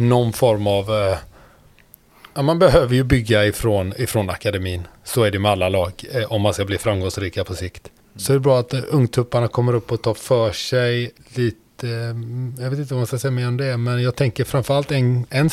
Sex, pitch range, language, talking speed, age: male, 110-135 Hz, Swedish, 220 wpm, 30-49